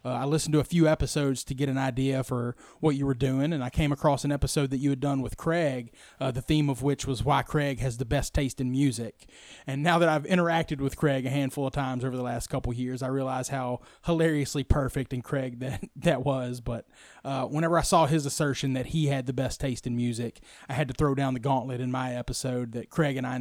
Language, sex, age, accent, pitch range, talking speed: English, male, 30-49, American, 130-150 Hz, 250 wpm